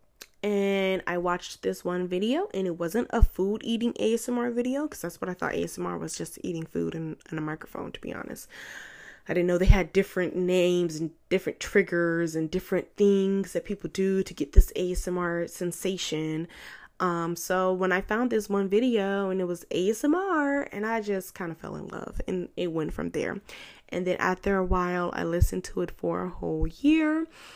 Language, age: English, 10-29